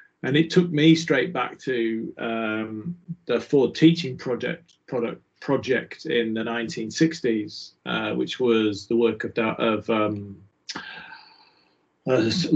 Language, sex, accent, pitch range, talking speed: English, male, British, 115-155 Hz, 115 wpm